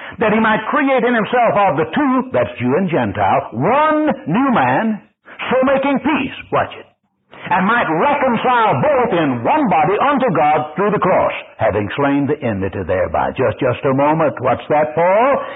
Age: 60-79